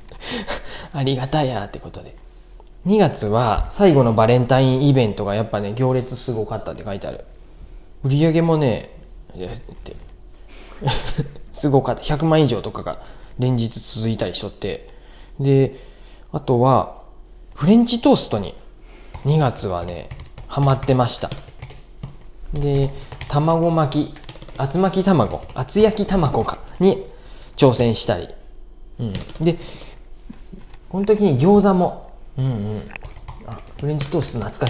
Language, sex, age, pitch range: Japanese, male, 20-39, 110-155 Hz